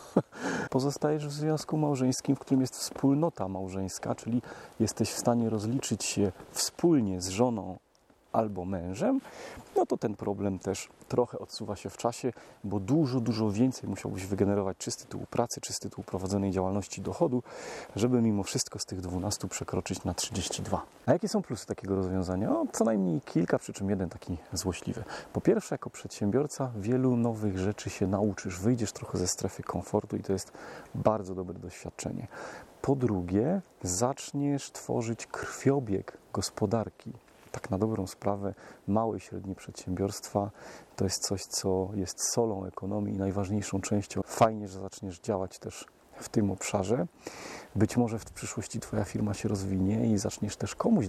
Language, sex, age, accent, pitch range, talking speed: Polish, male, 30-49, native, 95-125 Hz, 155 wpm